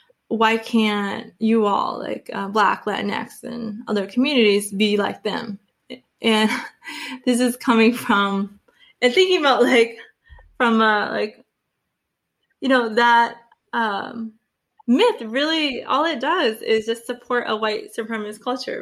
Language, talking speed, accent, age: English, 135 wpm, American, 20-39